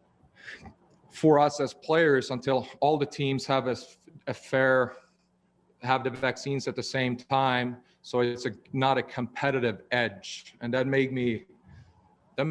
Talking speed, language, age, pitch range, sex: 155 wpm, English, 40-59, 115-135 Hz, male